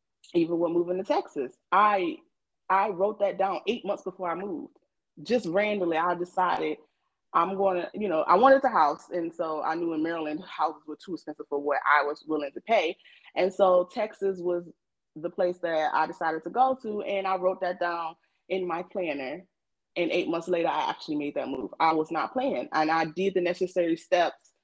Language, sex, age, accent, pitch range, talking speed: English, female, 20-39, American, 160-200 Hz, 205 wpm